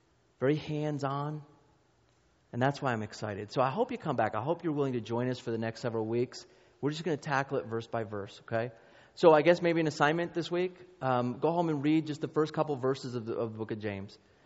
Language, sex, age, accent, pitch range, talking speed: English, male, 30-49, American, 110-130 Hz, 255 wpm